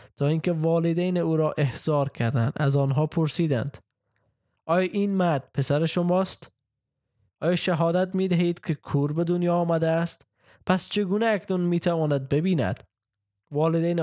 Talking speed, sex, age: 130 wpm, male, 20-39